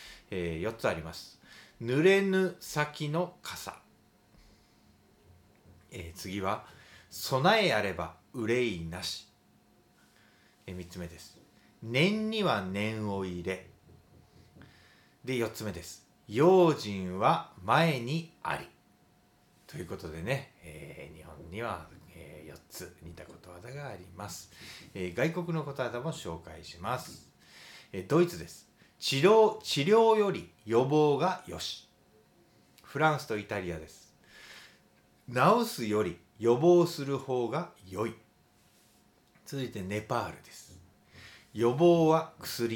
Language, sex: Japanese, male